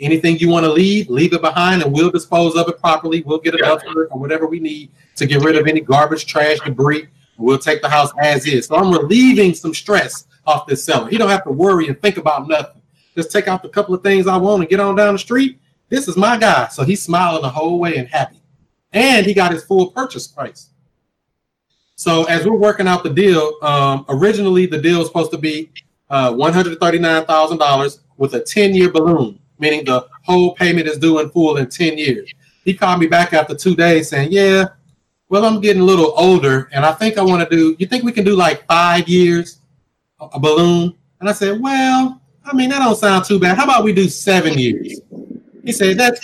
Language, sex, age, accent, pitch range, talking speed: English, male, 30-49, American, 155-195 Hz, 220 wpm